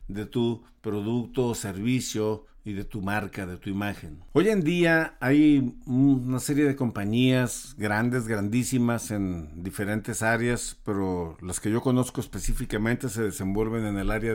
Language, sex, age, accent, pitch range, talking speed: Spanish, male, 50-69, Mexican, 105-130 Hz, 150 wpm